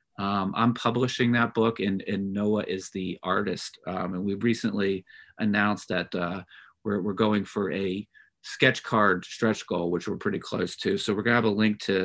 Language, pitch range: English, 100-115 Hz